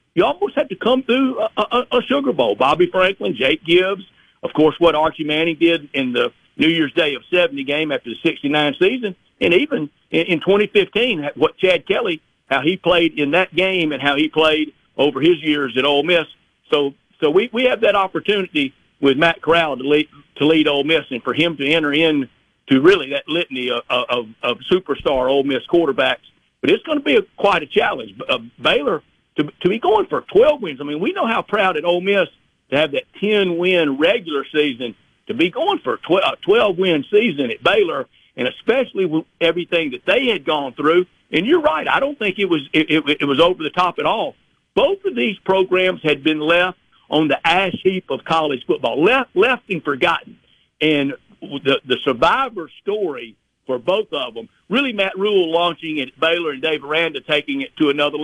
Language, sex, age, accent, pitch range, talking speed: English, male, 50-69, American, 150-195 Hz, 210 wpm